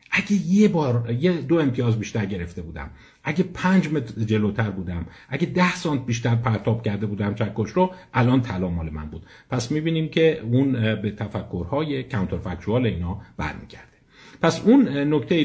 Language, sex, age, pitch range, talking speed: Persian, male, 50-69, 110-160 Hz, 155 wpm